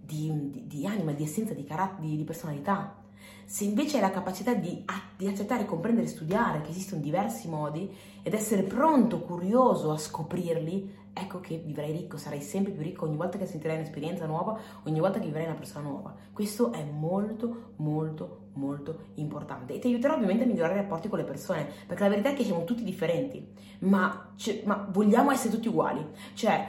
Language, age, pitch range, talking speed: Italian, 30-49, 155-210 Hz, 190 wpm